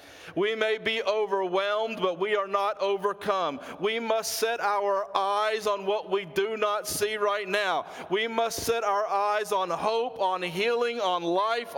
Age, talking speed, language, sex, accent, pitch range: 40-59, 170 wpm, English, male, American, 190-265 Hz